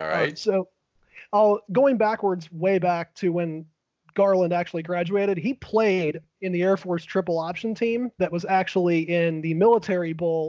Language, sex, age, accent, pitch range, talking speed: English, male, 30-49, American, 160-195 Hz, 160 wpm